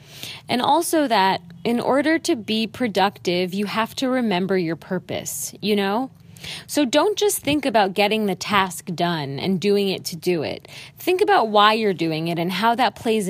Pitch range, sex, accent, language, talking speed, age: 170-230 Hz, female, American, English, 185 wpm, 20-39